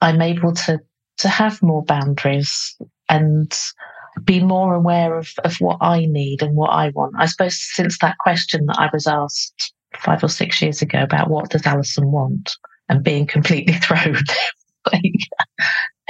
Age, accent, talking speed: 40-59, British, 165 wpm